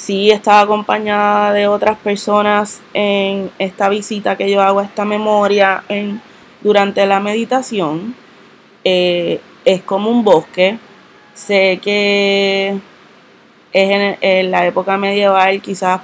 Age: 20-39